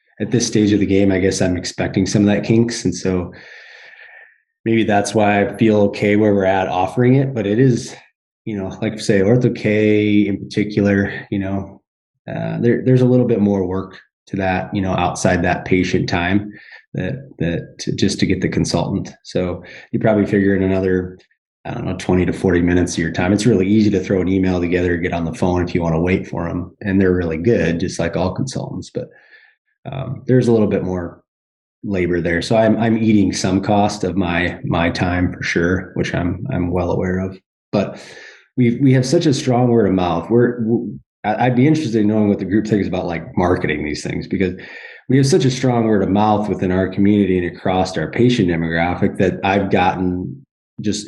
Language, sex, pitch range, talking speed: English, male, 90-115 Hz, 210 wpm